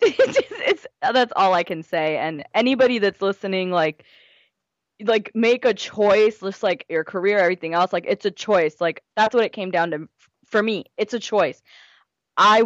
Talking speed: 185 wpm